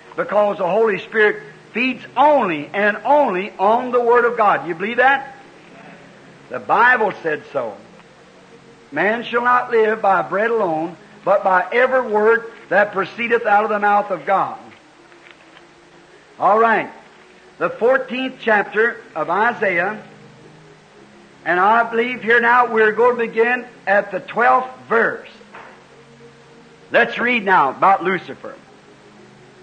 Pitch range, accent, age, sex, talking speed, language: 205-245 Hz, American, 60-79, male, 130 wpm, English